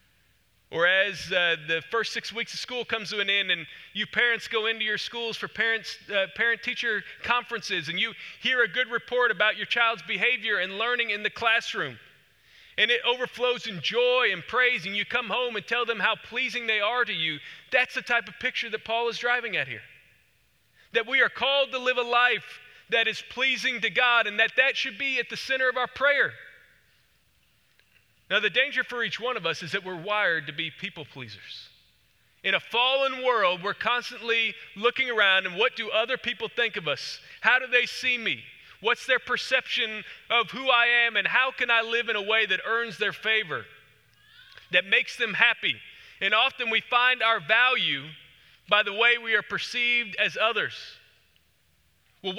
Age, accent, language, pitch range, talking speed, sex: 40-59, American, English, 205-245 Hz, 195 wpm, male